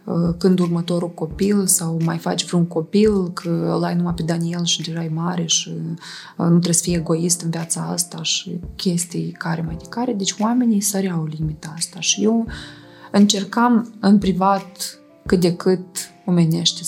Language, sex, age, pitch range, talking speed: Romanian, female, 20-39, 165-195 Hz, 165 wpm